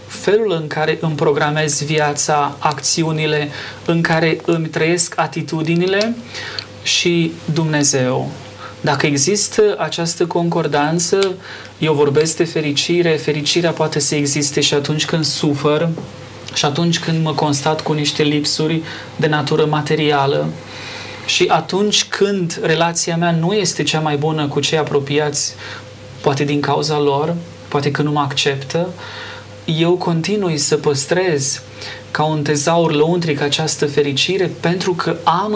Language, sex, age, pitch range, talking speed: Romanian, male, 30-49, 145-170 Hz, 130 wpm